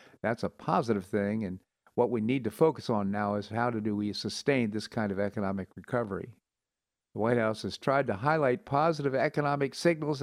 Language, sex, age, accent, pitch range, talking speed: English, male, 50-69, American, 100-135 Hz, 190 wpm